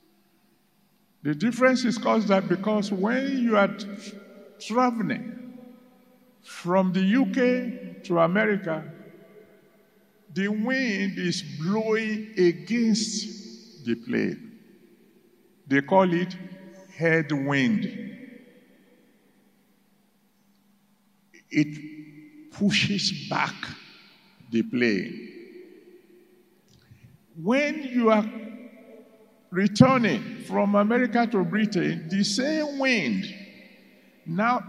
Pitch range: 185-235 Hz